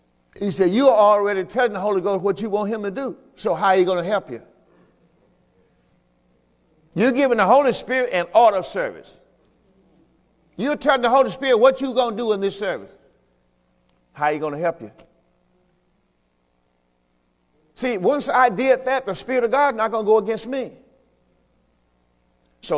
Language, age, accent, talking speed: English, 50-69, American, 180 wpm